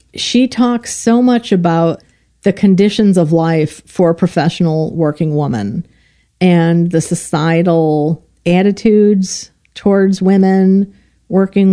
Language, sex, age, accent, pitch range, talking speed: English, female, 50-69, American, 165-190 Hz, 105 wpm